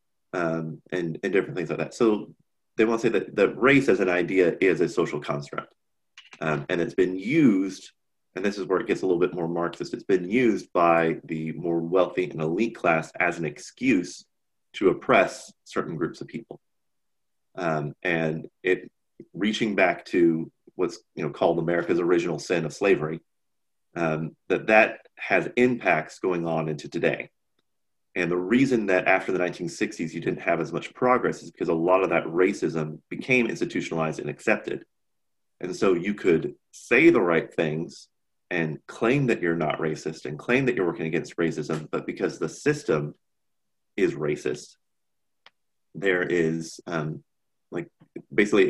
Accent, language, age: American, English, 30-49